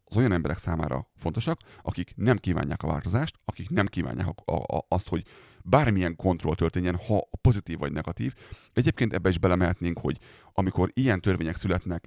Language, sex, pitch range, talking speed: Hungarian, male, 80-100 Hz, 165 wpm